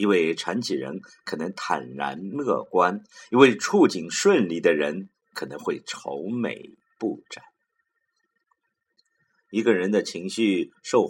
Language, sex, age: Chinese, male, 50-69